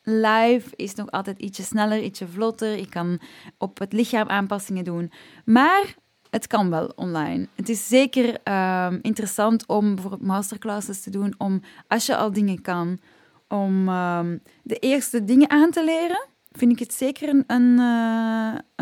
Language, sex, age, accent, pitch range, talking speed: Dutch, female, 20-39, Dutch, 190-245 Hz, 160 wpm